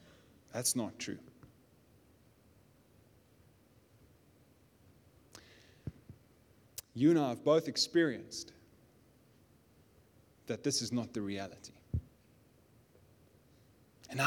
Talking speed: 65 wpm